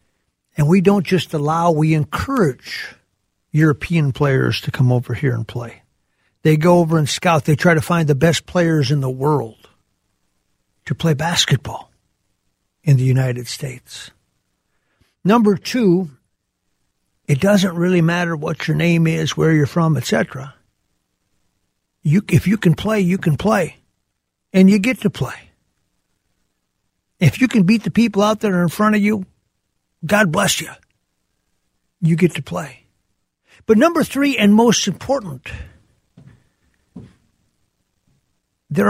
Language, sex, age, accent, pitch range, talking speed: English, male, 60-79, American, 140-185 Hz, 140 wpm